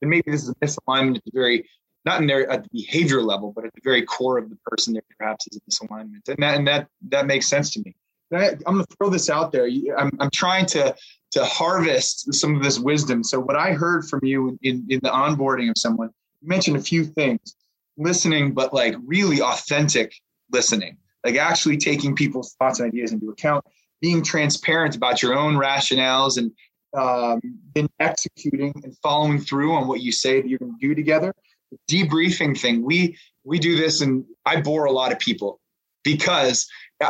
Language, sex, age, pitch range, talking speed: English, male, 20-39, 130-165 Hz, 200 wpm